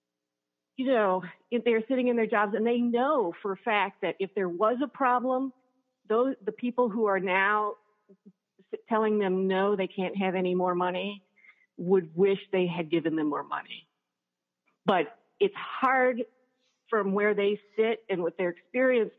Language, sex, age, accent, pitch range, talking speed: English, female, 50-69, American, 170-215 Hz, 170 wpm